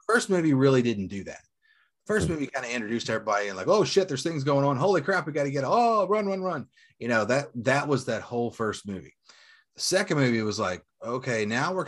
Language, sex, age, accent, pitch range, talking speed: English, male, 30-49, American, 110-140 Hz, 240 wpm